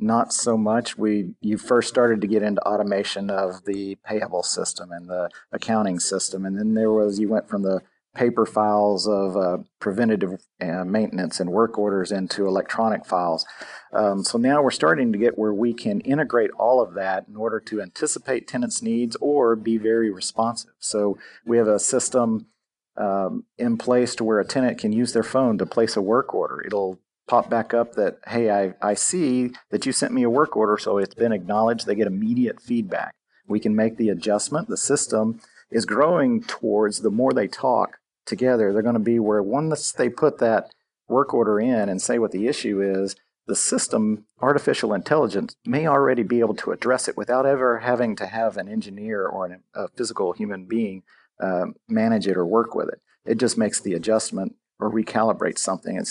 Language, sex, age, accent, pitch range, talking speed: English, male, 40-59, American, 105-120 Hz, 195 wpm